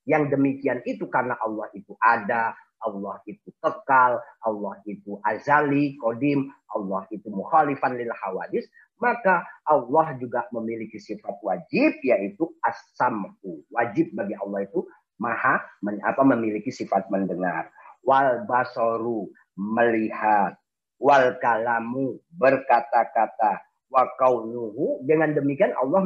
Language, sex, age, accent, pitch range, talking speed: Indonesian, male, 40-59, native, 115-155 Hz, 105 wpm